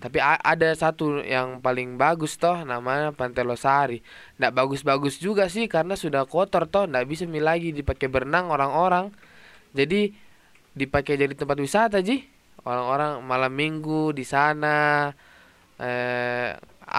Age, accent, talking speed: 20-39, native, 125 wpm